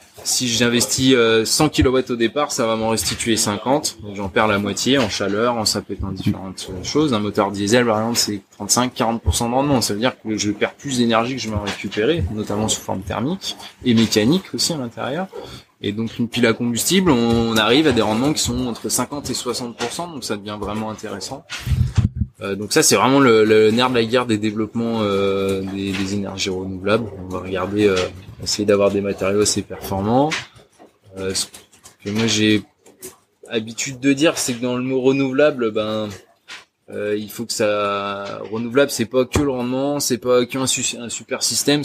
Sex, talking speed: male, 185 wpm